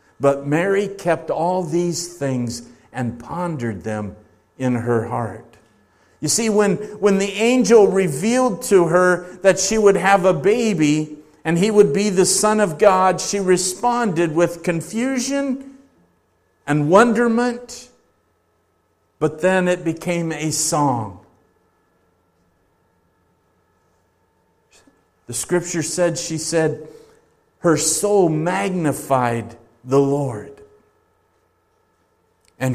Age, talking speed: 50-69, 105 wpm